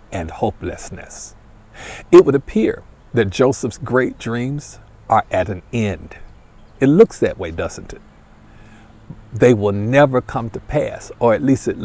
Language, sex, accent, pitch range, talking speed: English, male, American, 105-140 Hz, 145 wpm